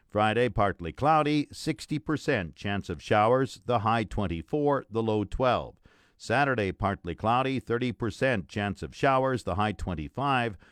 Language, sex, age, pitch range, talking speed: English, male, 50-69, 105-135 Hz, 130 wpm